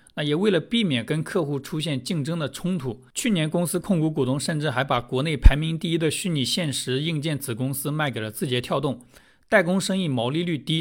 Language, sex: Chinese, male